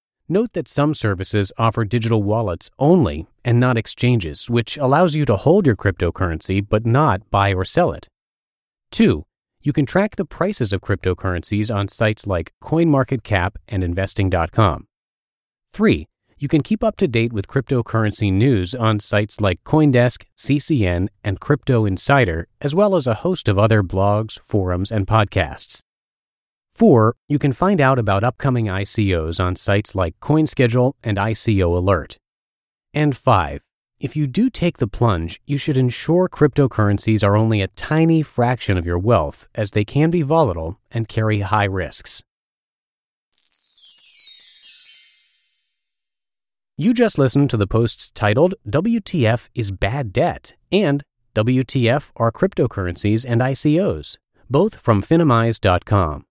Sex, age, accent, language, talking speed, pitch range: male, 30-49, American, English, 140 wpm, 100-140 Hz